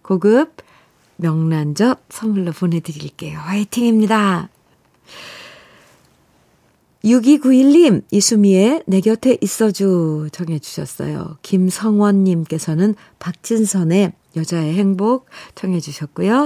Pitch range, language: 165-225 Hz, Korean